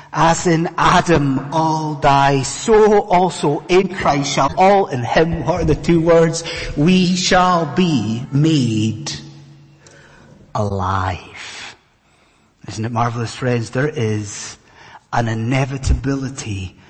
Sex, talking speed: male, 110 wpm